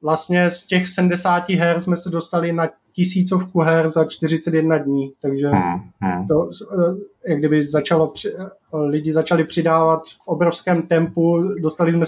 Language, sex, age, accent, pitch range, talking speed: Czech, male, 20-39, native, 155-170 Hz, 135 wpm